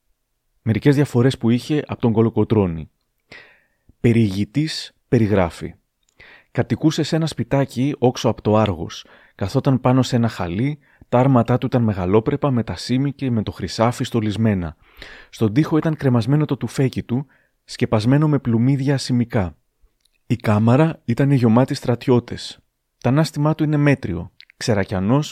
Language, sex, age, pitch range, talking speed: Greek, male, 30-49, 105-135 Hz, 135 wpm